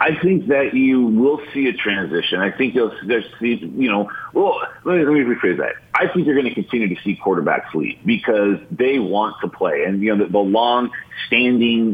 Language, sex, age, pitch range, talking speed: English, male, 30-49, 100-135 Hz, 210 wpm